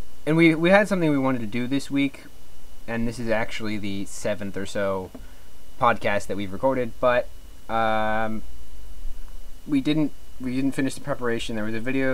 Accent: American